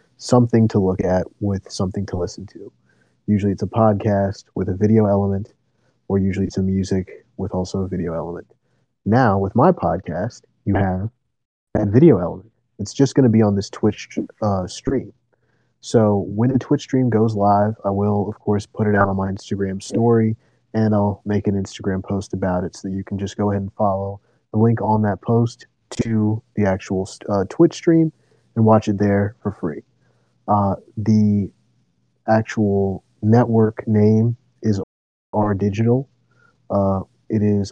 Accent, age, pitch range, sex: American, 30-49, 100-115 Hz, male